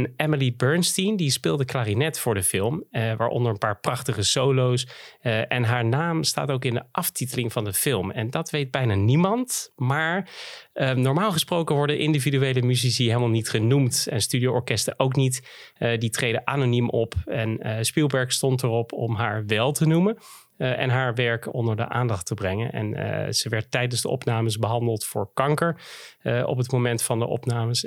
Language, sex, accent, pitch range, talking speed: Dutch, male, Dutch, 115-145 Hz, 185 wpm